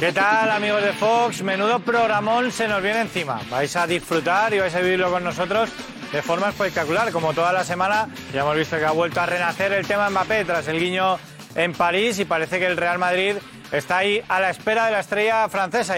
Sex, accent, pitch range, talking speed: male, Spanish, 160-205 Hz, 220 wpm